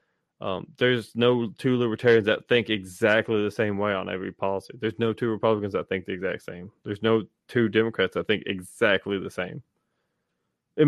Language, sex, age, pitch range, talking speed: English, male, 20-39, 105-125 Hz, 180 wpm